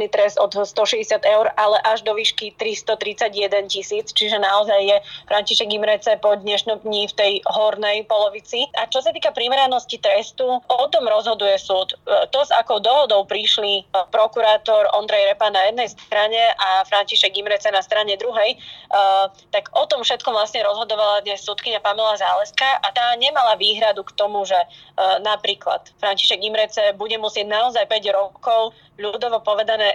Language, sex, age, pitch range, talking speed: Slovak, female, 20-39, 210-255 Hz, 150 wpm